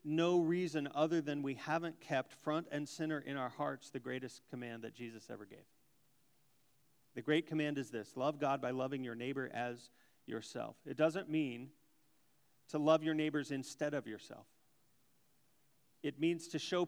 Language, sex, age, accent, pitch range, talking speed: English, male, 40-59, American, 145-180 Hz, 165 wpm